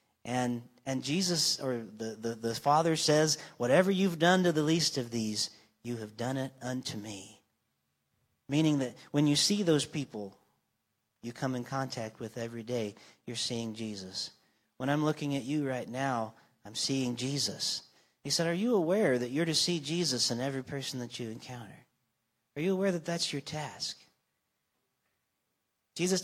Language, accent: English, American